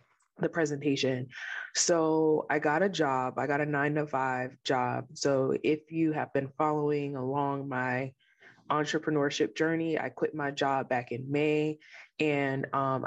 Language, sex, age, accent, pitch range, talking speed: English, female, 20-39, American, 135-155 Hz, 150 wpm